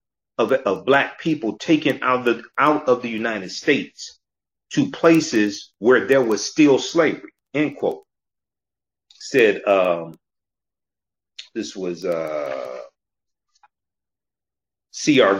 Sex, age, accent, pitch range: male, 40-59, American, 120-175 Hz